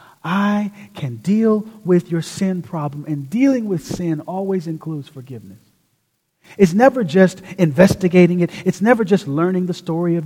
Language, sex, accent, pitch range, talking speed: English, male, American, 145-195 Hz, 150 wpm